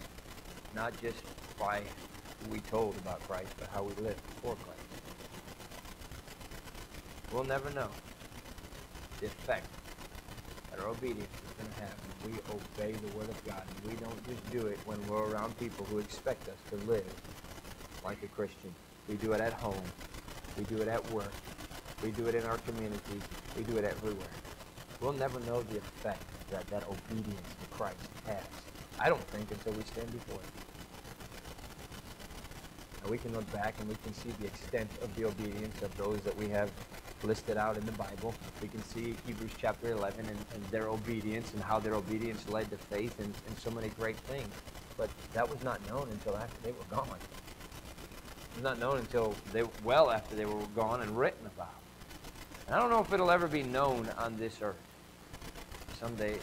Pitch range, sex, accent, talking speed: 100-115 Hz, male, American, 185 wpm